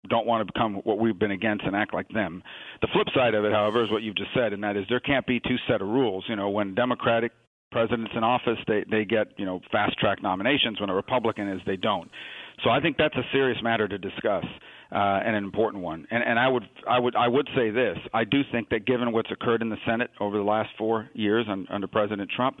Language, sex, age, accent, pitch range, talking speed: English, male, 50-69, American, 105-120 Hz, 260 wpm